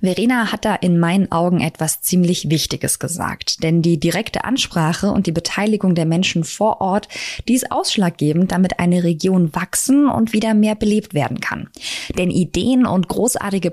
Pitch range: 155-200 Hz